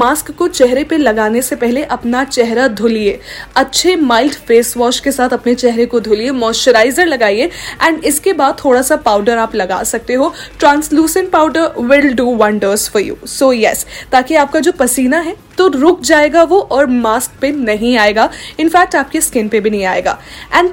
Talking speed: 180 wpm